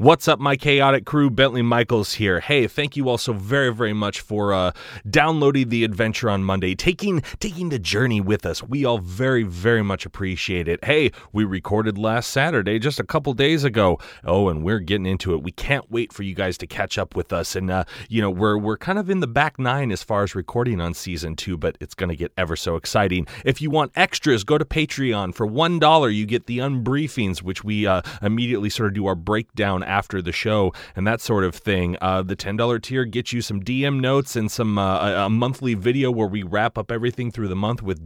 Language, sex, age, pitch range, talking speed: English, male, 30-49, 95-135 Hz, 230 wpm